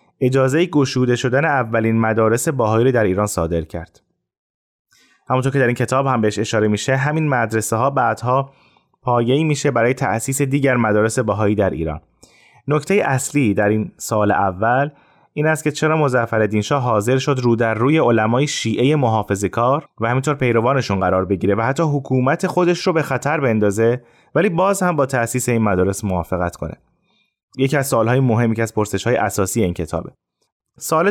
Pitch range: 105-135 Hz